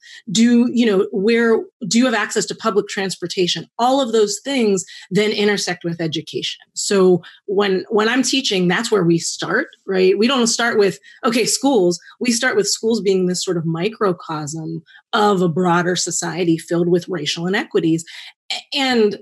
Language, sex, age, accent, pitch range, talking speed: English, female, 30-49, American, 175-225 Hz, 165 wpm